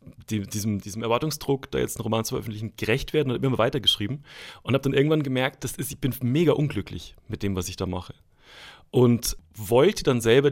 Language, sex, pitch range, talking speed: German, male, 105-130 Hz, 210 wpm